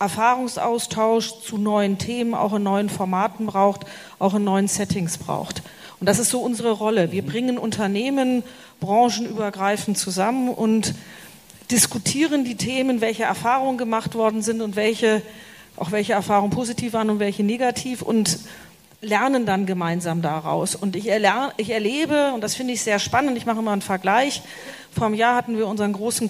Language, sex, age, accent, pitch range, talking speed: German, female, 40-59, German, 200-240 Hz, 160 wpm